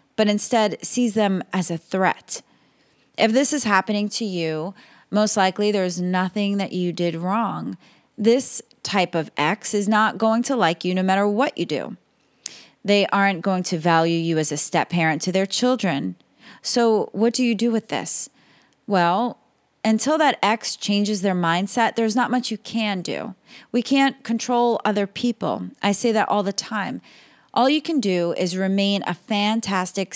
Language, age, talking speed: English, 30-49, 175 wpm